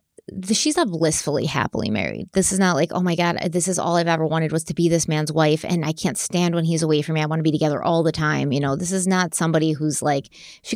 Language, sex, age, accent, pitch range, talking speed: English, female, 20-39, American, 155-190 Hz, 280 wpm